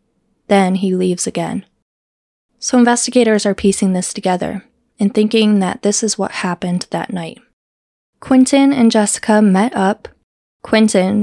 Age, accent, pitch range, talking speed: 20-39, American, 185-230 Hz, 135 wpm